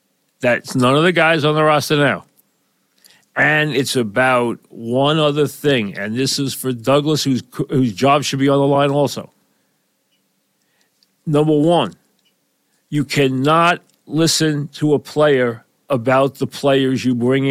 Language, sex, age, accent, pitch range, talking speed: English, male, 50-69, American, 125-150 Hz, 145 wpm